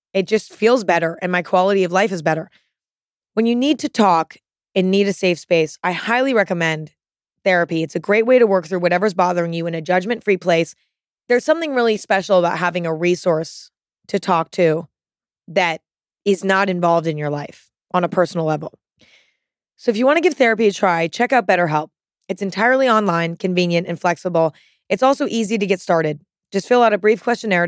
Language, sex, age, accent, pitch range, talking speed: English, female, 20-39, American, 175-220 Hz, 195 wpm